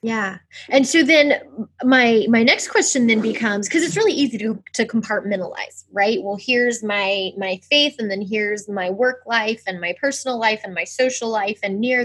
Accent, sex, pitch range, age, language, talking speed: American, female, 200-260 Hz, 20-39, English, 195 wpm